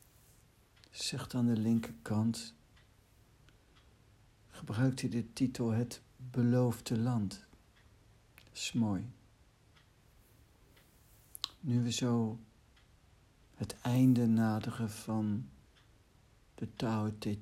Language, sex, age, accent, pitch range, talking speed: Dutch, male, 60-79, Dutch, 105-120 Hz, 85 wpm